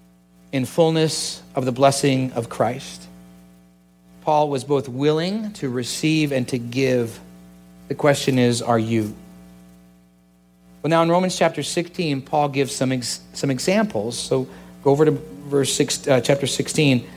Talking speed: 145 wpm